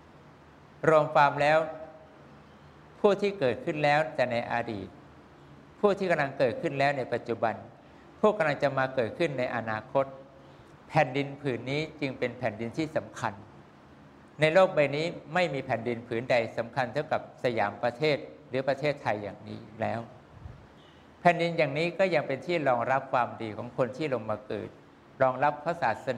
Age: 60-79